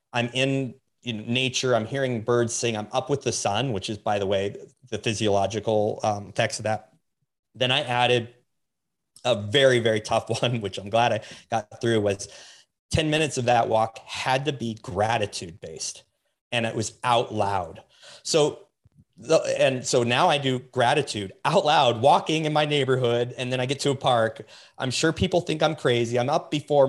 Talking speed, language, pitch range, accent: 185 wpm, English, 115-140 Hz, American